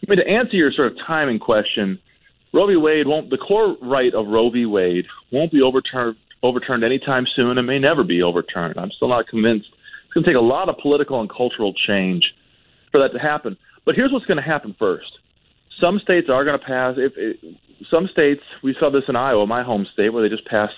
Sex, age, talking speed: male, 30-49, 230 wpm